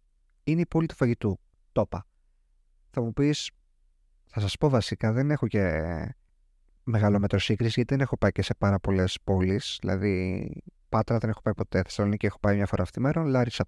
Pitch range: 90-125 Hz